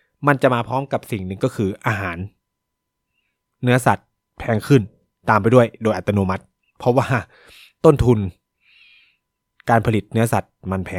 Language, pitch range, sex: Thai, 100-130 Hz, male